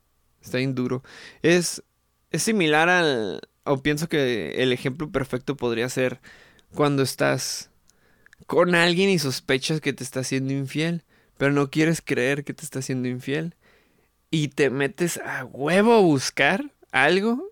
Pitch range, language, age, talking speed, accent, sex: 125-160 Hz, Spanish, 20-39, 145 wpm, Mexican, male